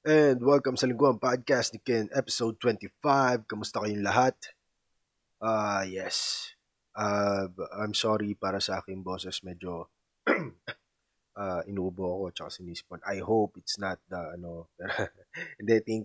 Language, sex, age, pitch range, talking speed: Filipino, male, 20-39, 95-110 Hz, 135 wpm